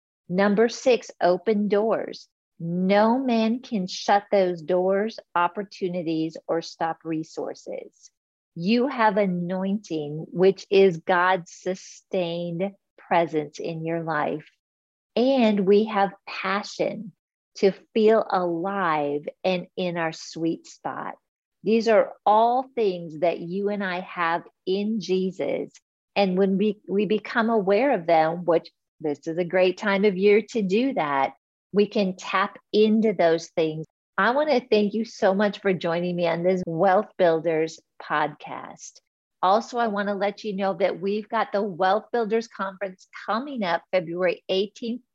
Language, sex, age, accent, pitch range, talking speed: English, female, 50-69, American, 175-210 Hz, 140 wpm